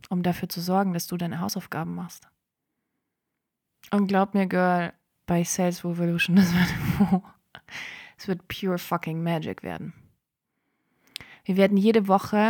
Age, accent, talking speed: 20-39, German, 135 wpm